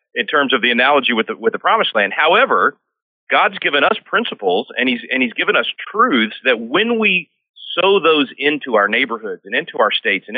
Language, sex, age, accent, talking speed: English, male, 40-59, American, 210 wpm